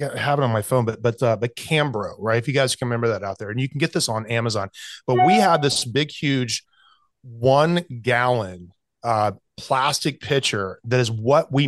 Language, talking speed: English, 215 wpm